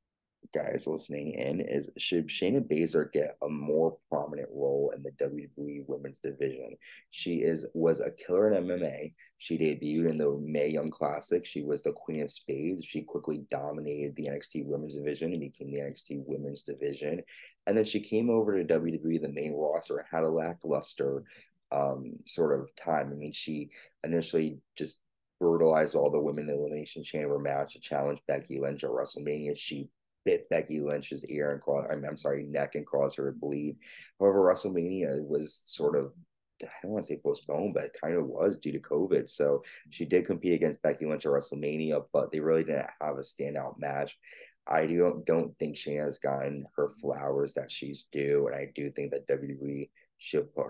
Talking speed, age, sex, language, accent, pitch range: 185 wpm, 30-49, male, English, American, 70-85 Hz